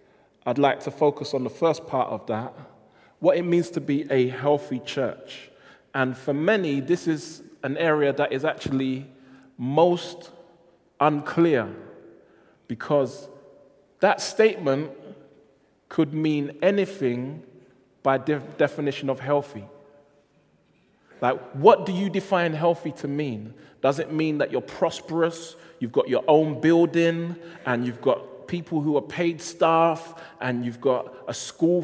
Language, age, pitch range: English, 20-39, 125-165 Hz